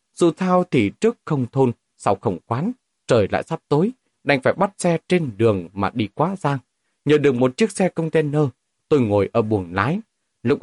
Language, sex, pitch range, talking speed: Vietnamese, male, 110-165 Hz, 200 wpm